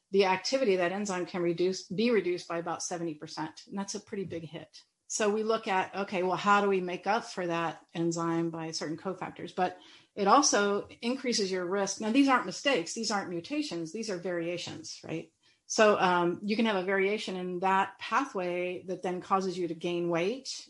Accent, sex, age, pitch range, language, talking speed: American, female, 40-59, 170-195 Hz, English, 200 wpm